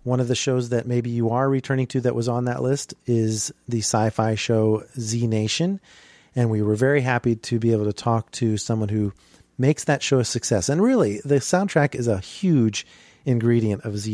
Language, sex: English, male